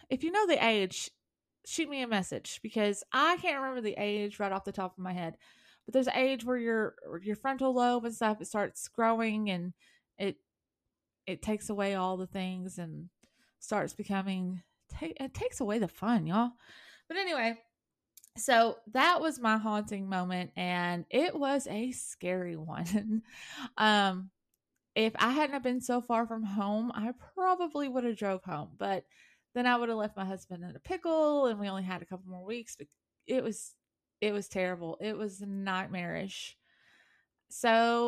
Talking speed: 175 wpm